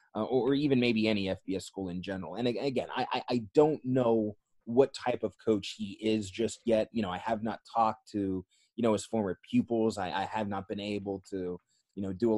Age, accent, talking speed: 20-39, American, 230 wpm